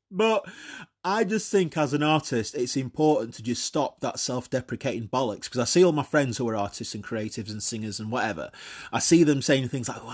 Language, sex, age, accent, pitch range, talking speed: English, male, 30-49, British, 115-145 Hz, 220 wpm